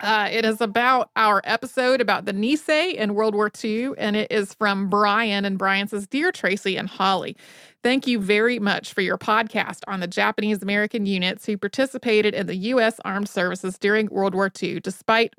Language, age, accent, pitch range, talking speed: English, 30-49, American, 200-235 Hz, 185 wpm